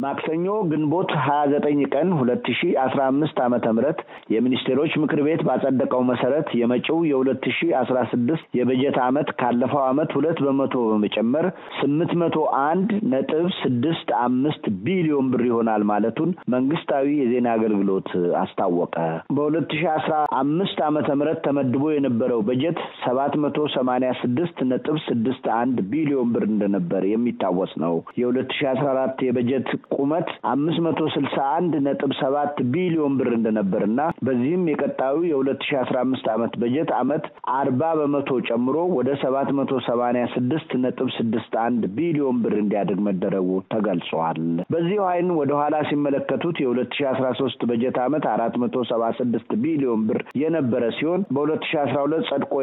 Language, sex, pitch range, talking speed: Amharic, male, 120-150 Hz, 85 wpm